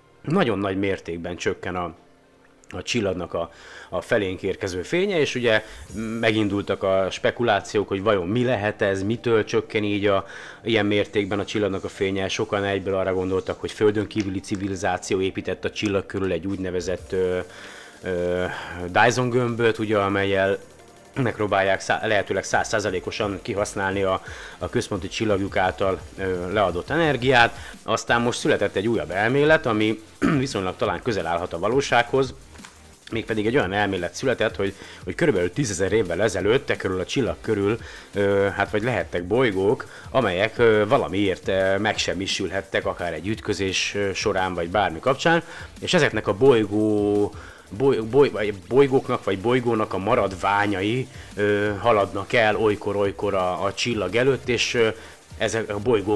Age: 30-49